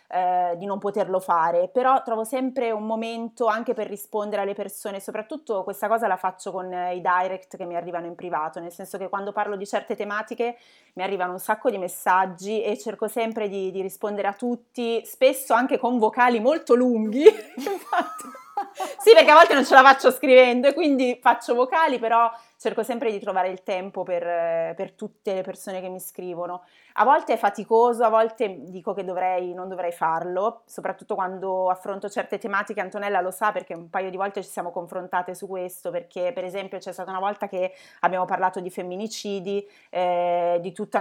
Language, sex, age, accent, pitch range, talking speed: Italian, female, 30-49, native, 185-225 Hz, 190 wpm